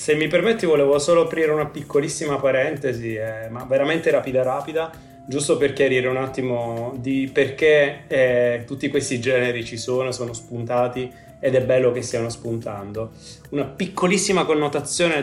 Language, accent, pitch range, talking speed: Italian, native, 120-145 Hz, 150 wpm